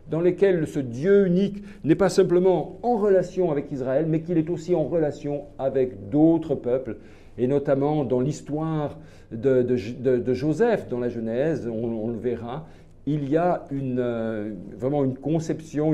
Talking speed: 160 wpm